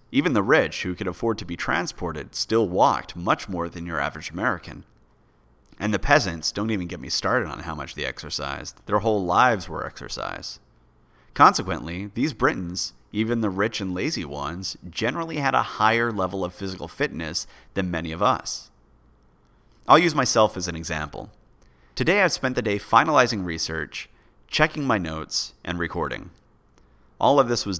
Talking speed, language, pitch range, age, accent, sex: 170 wpm, English, 80-110 Hz, 30-49, American, male